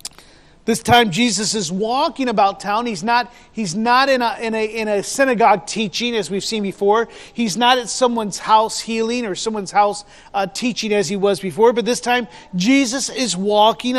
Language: English